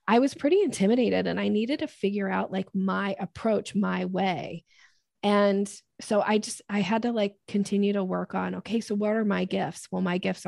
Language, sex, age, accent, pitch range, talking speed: English, female, 20-39, American, 180-210 Hz, 205 wpm